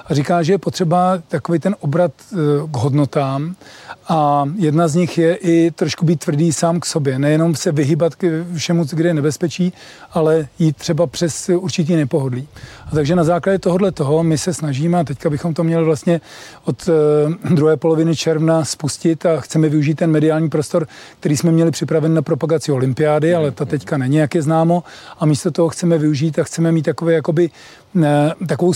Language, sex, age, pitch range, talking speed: Czech, male, 40-59, 155-170 Hz, 180 wpm